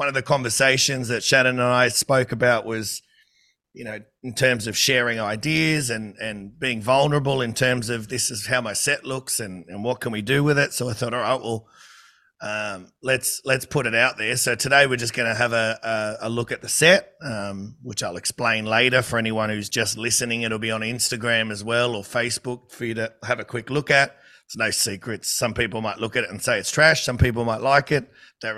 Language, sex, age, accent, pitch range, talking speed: English, male, 30-49, Australian, 115-130 Hz, 235 wpm